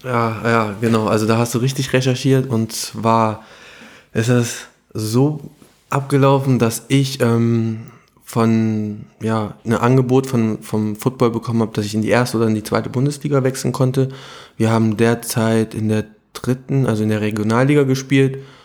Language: German